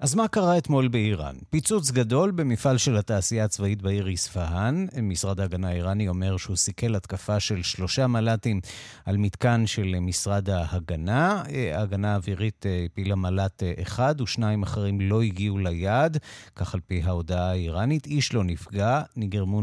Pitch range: 95-120 Hz